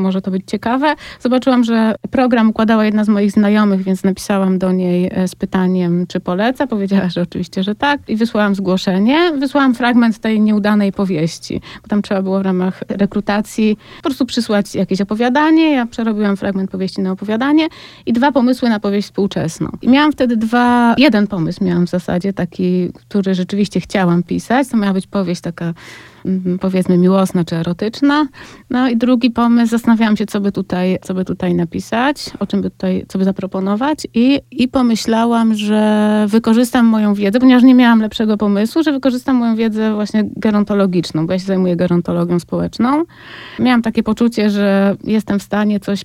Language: Polish